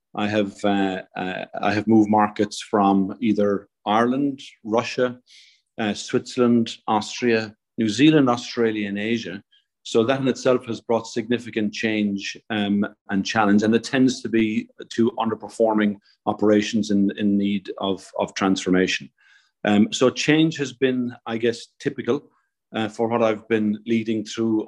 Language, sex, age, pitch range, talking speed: English, male, 40-59, 105-125 Hz, 140 wpm